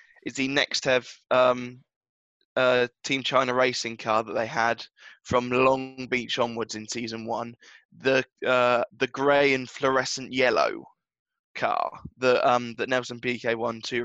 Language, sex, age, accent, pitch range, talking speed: English, male, 10-29, British, 120-130 Hz, 140 wpm